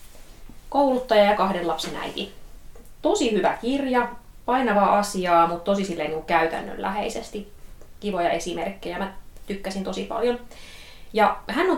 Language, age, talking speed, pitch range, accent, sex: Finnish, 20-39, 110 wpm, 160-210 Hz, native, female